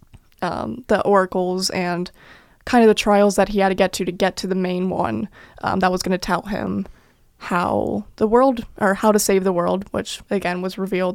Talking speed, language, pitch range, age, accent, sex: 215 wpm, English, 180-220 Hz, 20-39, American, female